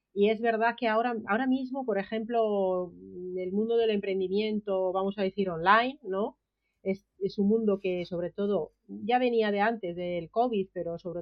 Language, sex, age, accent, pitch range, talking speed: Spanish, female, 40-59, Spanish, 190-230 Hz, 175 wpm